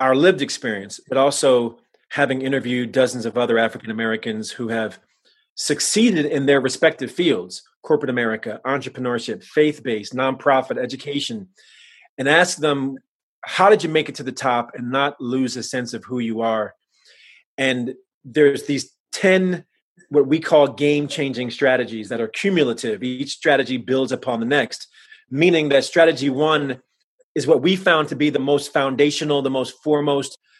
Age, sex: 30-49, male